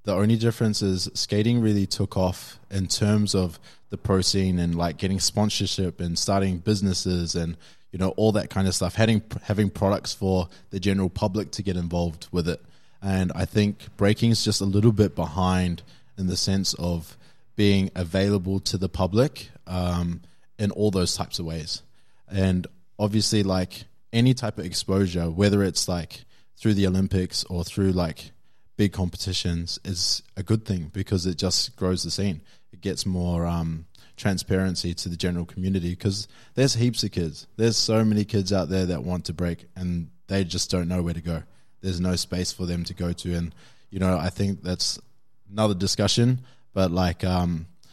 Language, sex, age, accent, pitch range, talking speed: English, male, 20-39, Australian, 90-105 Hz, 180 wpm